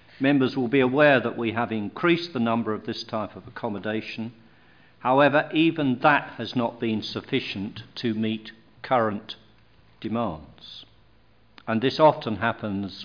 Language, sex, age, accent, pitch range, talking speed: English, male, 50-69, British, 105-125 Hz, 140 wpm